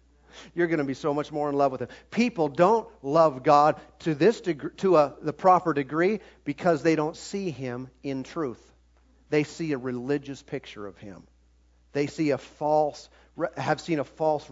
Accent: American